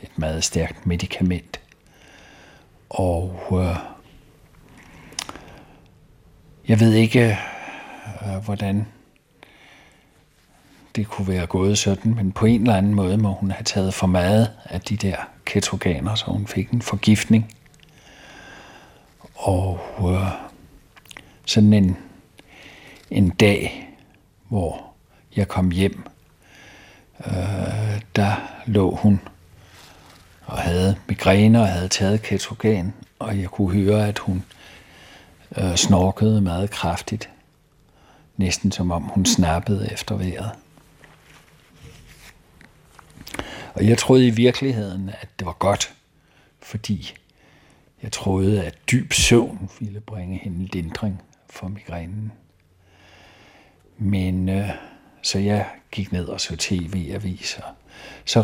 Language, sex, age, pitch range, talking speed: Danish, male, 60-79, 95-110 Hz, 105 wpm